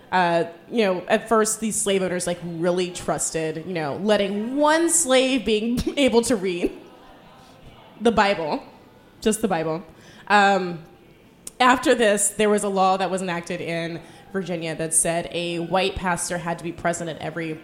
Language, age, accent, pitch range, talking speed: English, 20-39, American, 165-215 Hz, 165 wpm